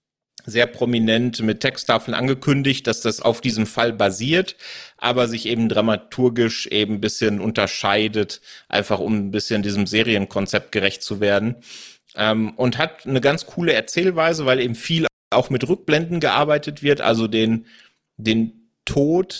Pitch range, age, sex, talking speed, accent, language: 115-140 Hz, 30-49, male, 145 wpm, German, German